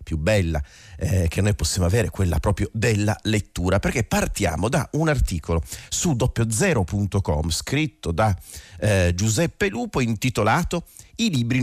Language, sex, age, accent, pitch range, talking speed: Italian, male, 40-59, native, 85-110 Hz, 135 wpm